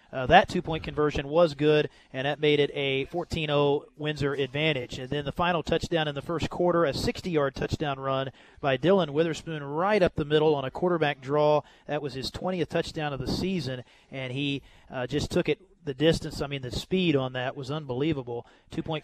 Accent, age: American, 30-49